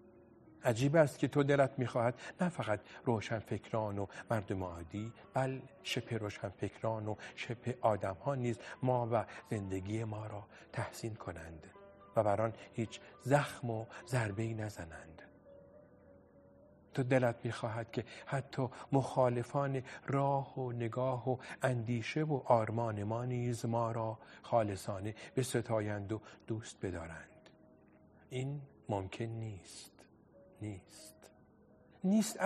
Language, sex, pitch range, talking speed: Persian, male, 105-135 Hz, 115 wpm